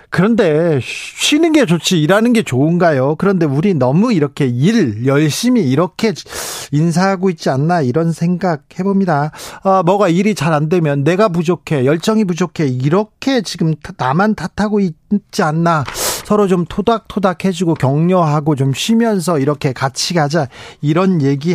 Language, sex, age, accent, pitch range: Korean, male, 40-59, native, 145-195 Hz